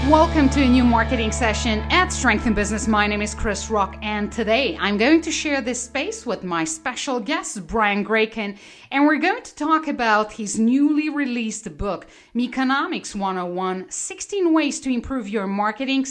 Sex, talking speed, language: female, 175 wpm, English